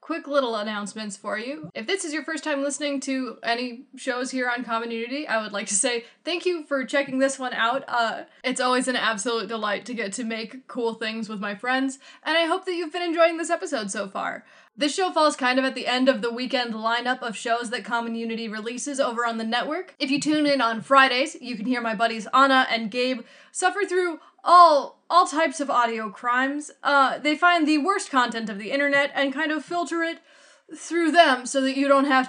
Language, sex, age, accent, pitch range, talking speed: English, female, 10-29, American, 235-290 Hz, 225 wpm